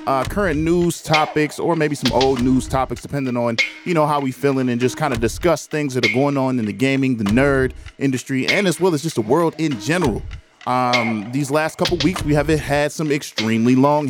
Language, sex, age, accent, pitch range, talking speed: English, male, 20-39, American, 125-160 Hz, 225 wpm